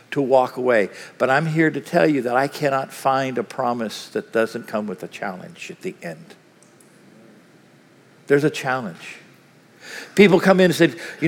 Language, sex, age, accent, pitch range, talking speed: English, male, 50-69, American, 170-235 Hz, 175 wpm